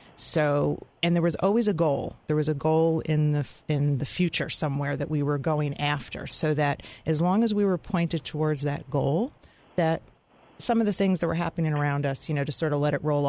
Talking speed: 230 wpm